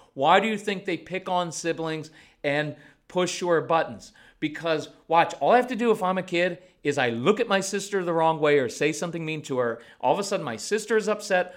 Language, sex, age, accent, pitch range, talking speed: English, male, 40-59, American, 145-195 Hz, 240 wpm